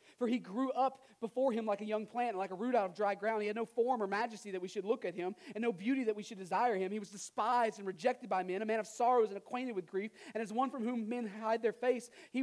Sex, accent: male, American